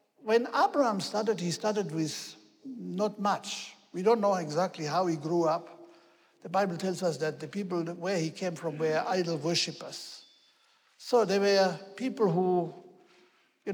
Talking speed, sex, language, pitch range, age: 155 wpm, male, English, 170-210 Hz, 60-79